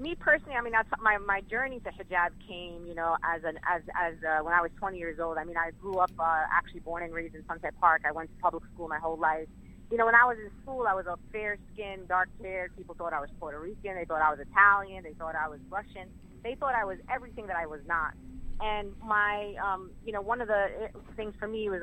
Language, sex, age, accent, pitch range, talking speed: English, female, 30-49, American, 165-205 Hz, 260 wpm